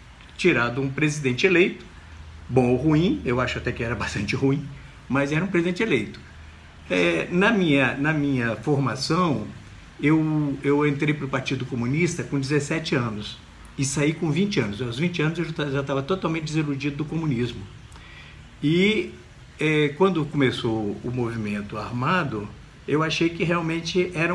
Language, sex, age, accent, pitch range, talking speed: Portuguese, male, 60-79, Brazilian, 125-170 Hz, 155 wpm